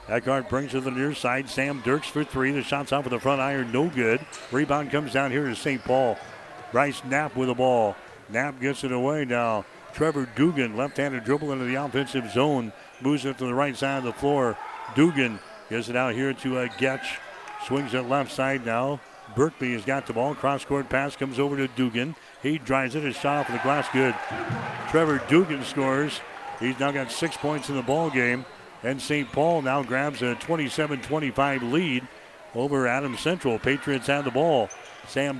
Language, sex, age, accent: English, male, 60-79, American